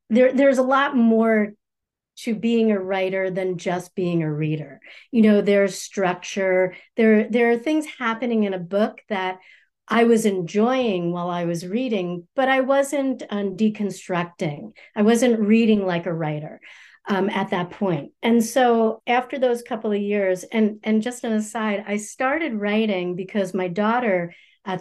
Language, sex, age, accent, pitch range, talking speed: English, female, 40-59, American, 190-240 Hz, 165 wpm